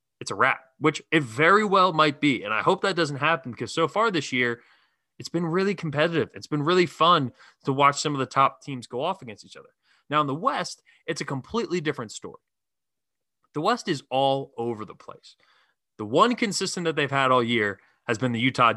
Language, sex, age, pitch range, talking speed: English, male, 20-39, 125-175 Hz, 215 wpm